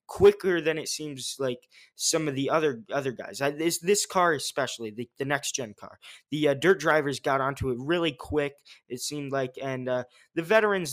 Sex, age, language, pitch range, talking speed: male, 20-39, English, 130-160 Hz, 200 wpm